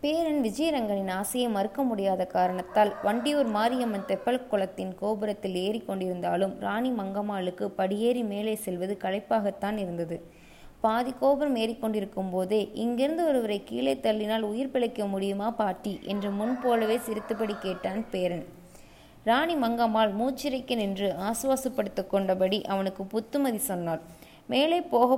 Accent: native